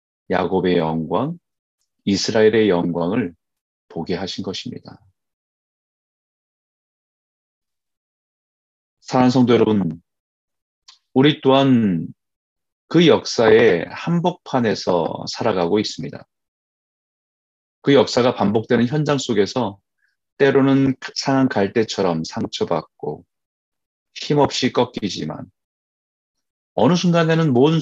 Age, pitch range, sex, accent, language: 30-49, 85-135 Hz, male, native, Korean